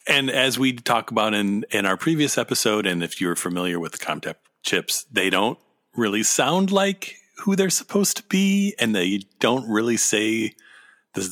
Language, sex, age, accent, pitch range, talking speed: English, male, 40-59, American, 95-145 Hz, 180 wpm